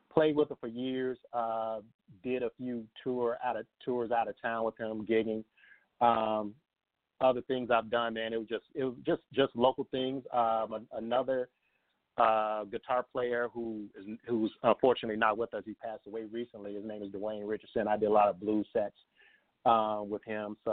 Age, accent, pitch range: 40-59, American, 105-120 Hz